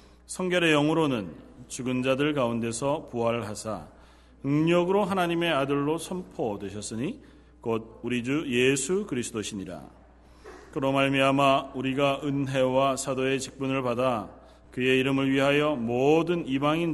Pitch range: 105-140 Hz